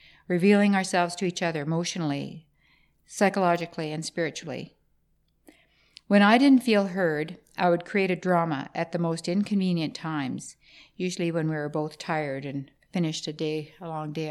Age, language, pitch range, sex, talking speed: 60-79, English, 160-195 Hz, female, 150 wpm